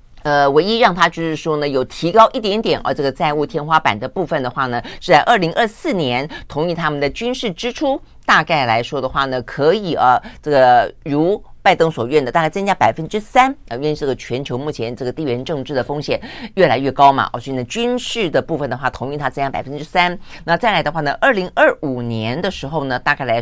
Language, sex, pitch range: Chinese, female, 125-170 Hz